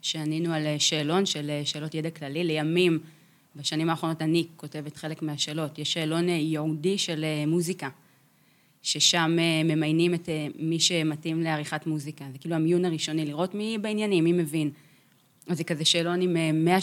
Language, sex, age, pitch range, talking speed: Hebrew, female, 20-39, 155-175 Hz, 145 wpm